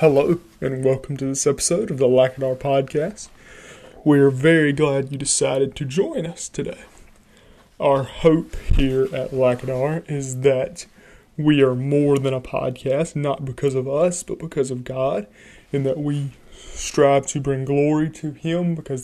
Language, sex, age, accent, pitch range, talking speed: English, male, 20-39, American, 130-150 Hz, 160 wpm